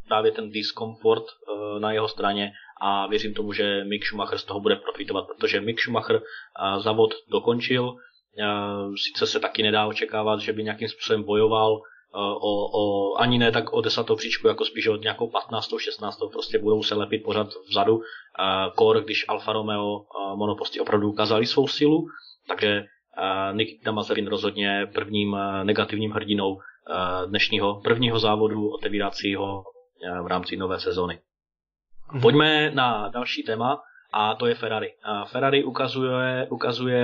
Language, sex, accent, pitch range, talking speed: Czech, male, native, 105-130 Hz, 140 wpm